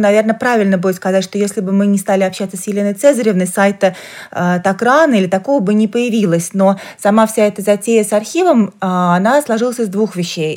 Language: Russian